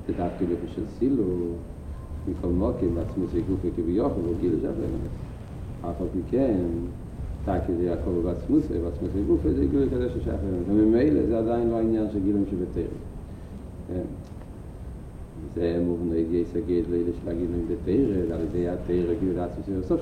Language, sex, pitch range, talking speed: Hebrew, male, 85-110 Hz, 145 wpm